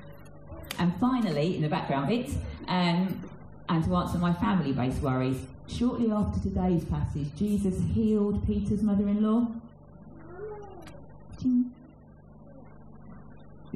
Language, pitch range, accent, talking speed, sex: English, 155-190 Hz, British, 95 wpm, female